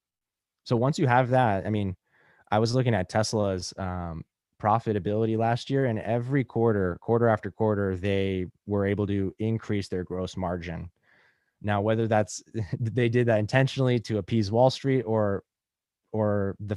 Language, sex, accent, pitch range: English, male, American, 100-120 Hz